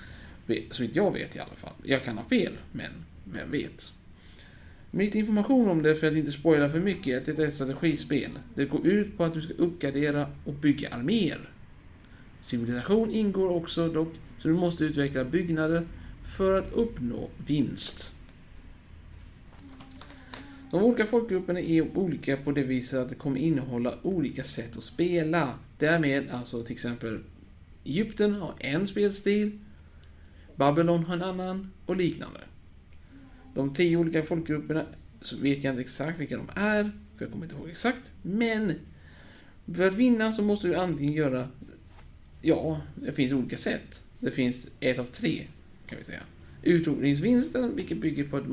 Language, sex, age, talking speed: Swedish, male, 50-69, 155 wpm